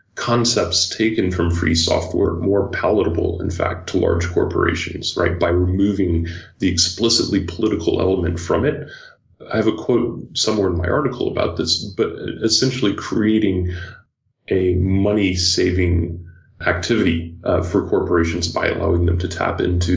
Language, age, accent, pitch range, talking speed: English, 30-49, American, 85-105 Hz, 140 wpm